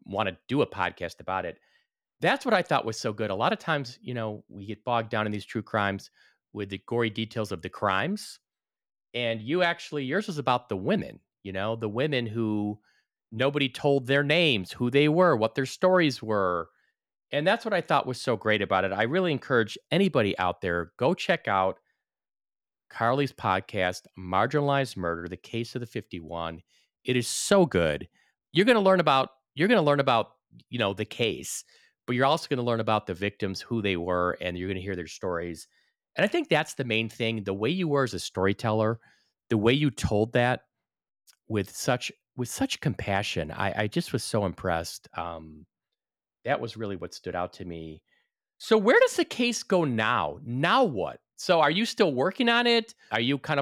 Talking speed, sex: 205 wpm, male